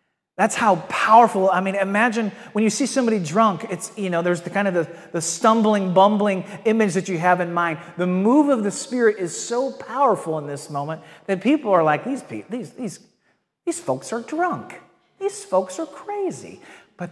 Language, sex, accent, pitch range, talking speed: English, male, American, 180-245 Hz, 195 wpm